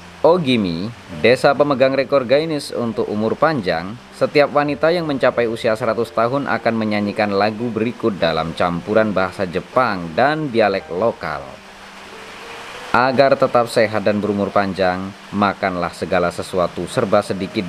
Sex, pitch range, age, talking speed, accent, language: male, 90-120 Hz, 20-39, 125 wpm, native, Indonesian